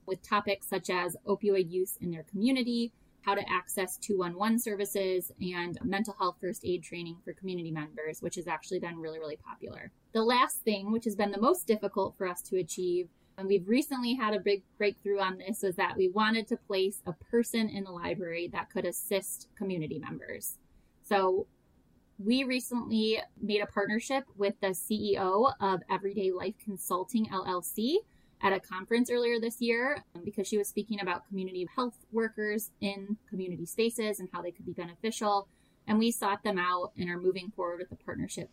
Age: 20-39